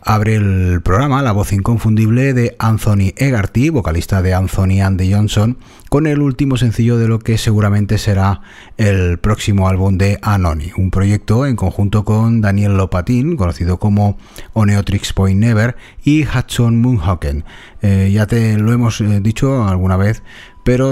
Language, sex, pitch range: Spanish, male, 95-115 Hz